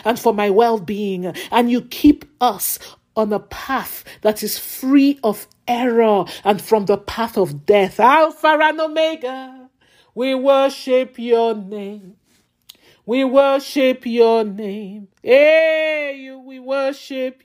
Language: English